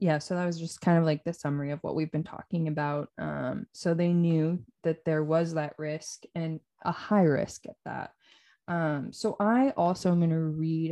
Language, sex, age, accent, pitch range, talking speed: English, female, 20-39, American, 155-180 Hz, 215 wpm